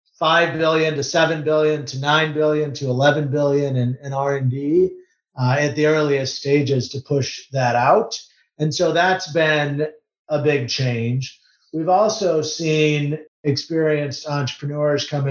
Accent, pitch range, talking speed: American, 135-160 Hz, 140 wpm